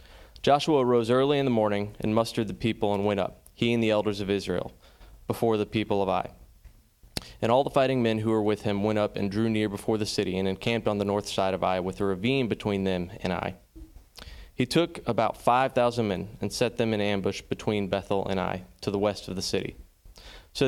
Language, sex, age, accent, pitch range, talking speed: English, male, 20-39, American, 95-115 Hz, 225 wpm